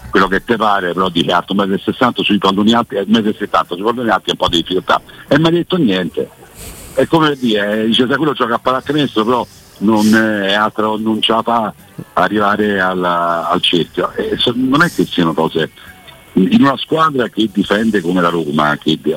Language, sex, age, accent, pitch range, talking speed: Italian, male, 60-79, native, 85-120 Hz, 195 wpm